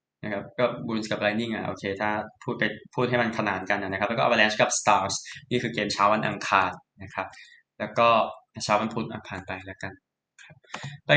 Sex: male